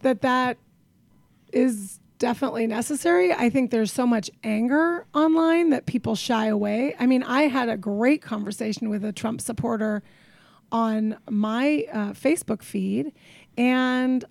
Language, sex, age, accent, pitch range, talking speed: English, female, 30-49, American, 210-260 Hz, 140 wpm